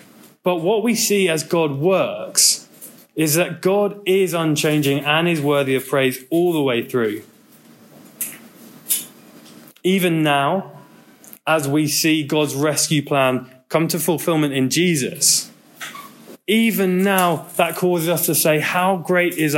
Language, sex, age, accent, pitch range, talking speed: English, male, 20-39, British, 135-175 Hz, 135 wpm